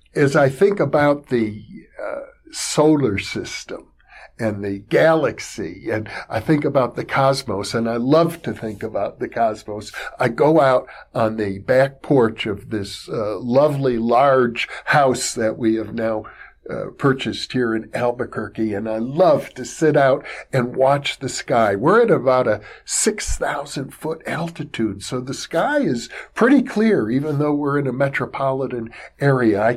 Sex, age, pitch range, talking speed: male, 50-69, 115-160 Hz, 155 wpm